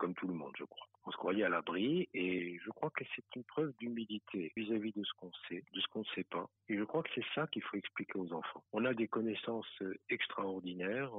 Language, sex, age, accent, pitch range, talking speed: French, male, 50-69, French, 100-120 Hz, 245 wpm